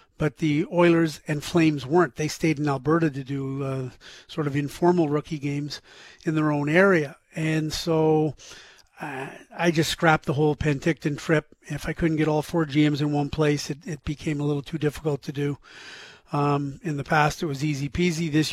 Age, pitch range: 40-59, 145-170 Hz